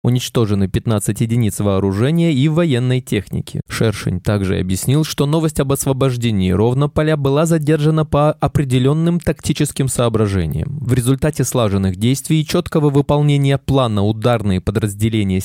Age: 20-39